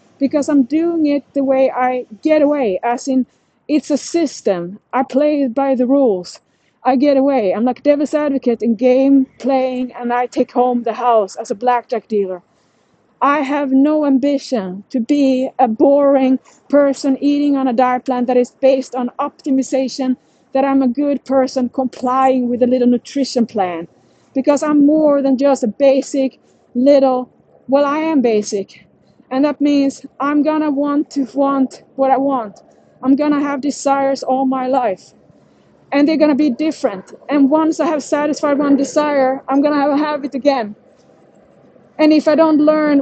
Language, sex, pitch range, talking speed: English, female, 255-285 Hz, 175 wpm